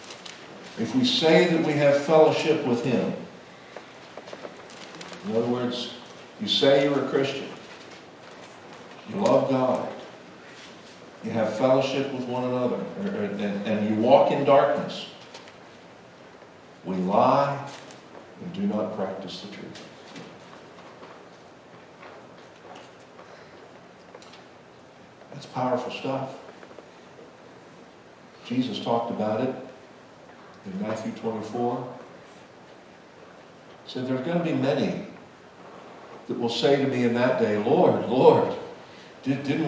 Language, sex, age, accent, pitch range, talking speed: English, male, 60-79, American, 120-175 Hz, 100 wpm